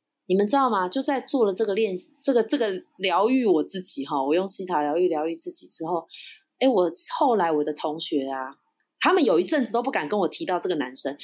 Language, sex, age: Chinese, female, 30-49